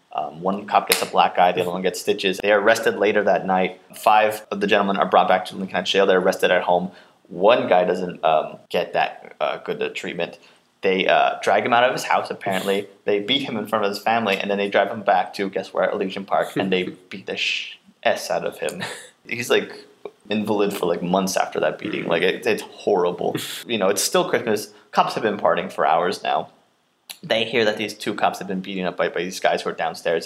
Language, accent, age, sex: English, American, 20-39, male